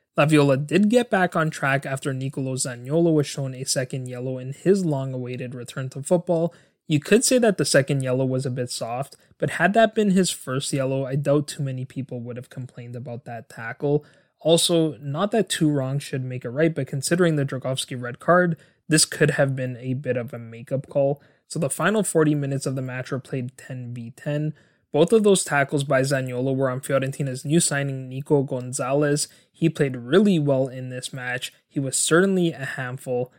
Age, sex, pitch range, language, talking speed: 20-39, male, 130-155 Hz, English, 200 wpm